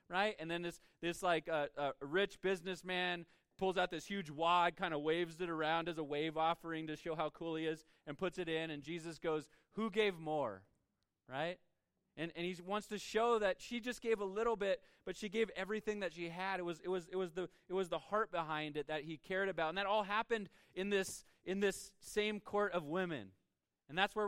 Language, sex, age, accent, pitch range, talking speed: English, male, 30-49, American, 165-205 Hz, 230 wpm